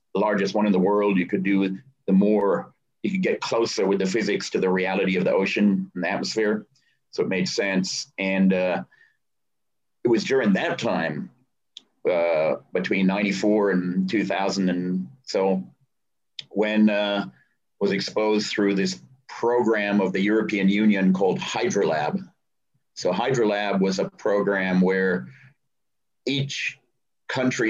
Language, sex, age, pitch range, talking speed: English, male, 40-59, 95-110 Hz, 145 wpm